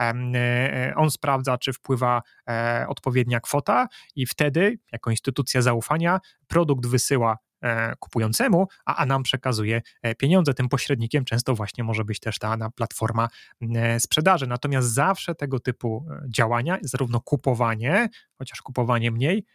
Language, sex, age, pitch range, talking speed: Polish, male, 30-49, 120-150 Hz, 120 wpm